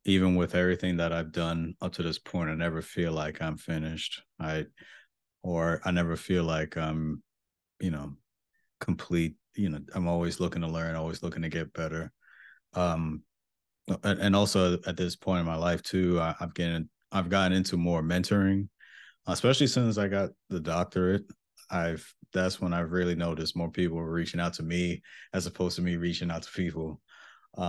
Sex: male